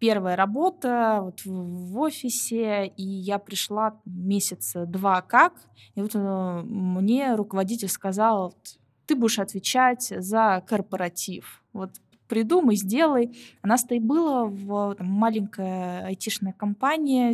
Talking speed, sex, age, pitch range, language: 105 wpm, female, 20-39, 200-245 Hz, Russian